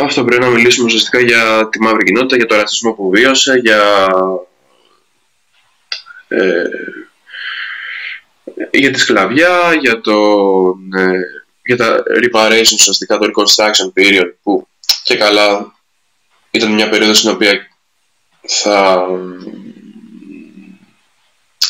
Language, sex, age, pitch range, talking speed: Greek, male, 20-39, 105-130 Hz, 105 wpm